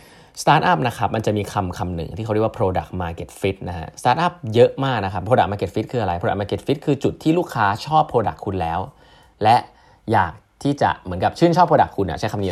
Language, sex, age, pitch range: Thai, male, 20-39, 95-125 Hz